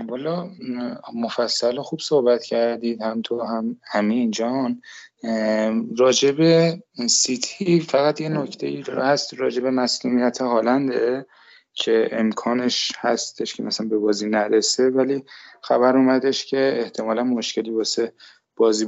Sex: male